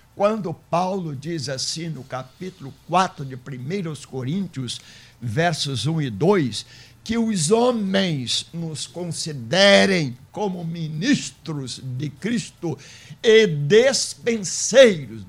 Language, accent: Portuguese, Brazilian